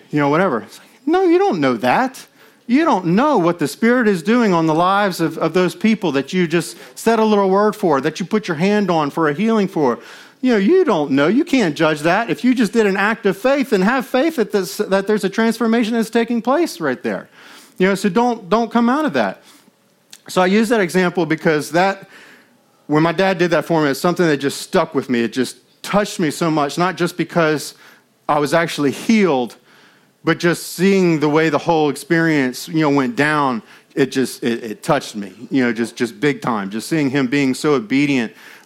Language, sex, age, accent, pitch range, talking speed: English, male, 40-59, American, 135-195 Hz, 225 wpm